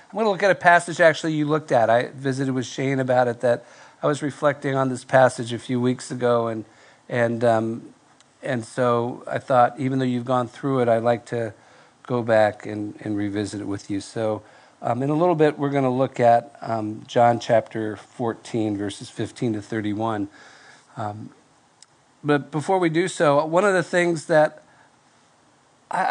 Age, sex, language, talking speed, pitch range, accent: 50-69, male, English, 190 wpm, 120-155 Hz, American